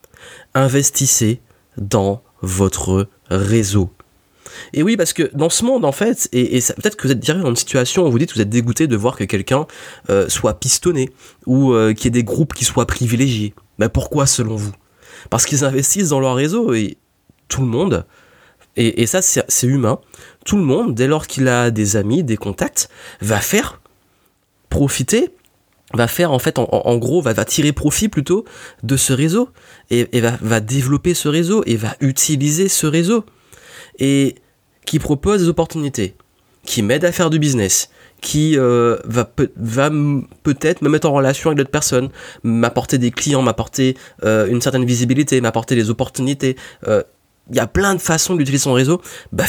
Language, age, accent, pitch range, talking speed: French, 20-39, French, 115-150 Hz, 190 wpm